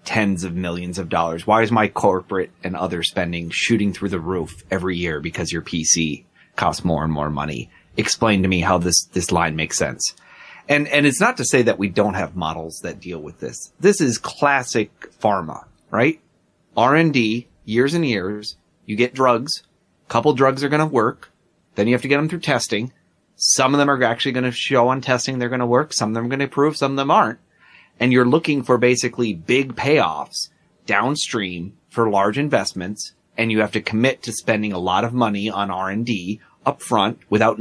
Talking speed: 210 wpm